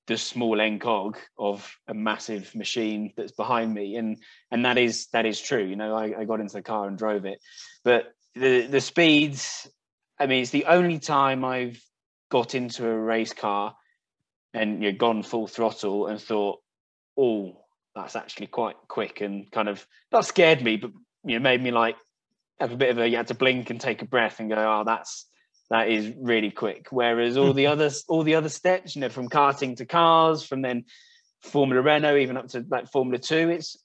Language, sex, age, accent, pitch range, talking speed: English, male, 20-39, British, 110-140 Hz, 200 wpm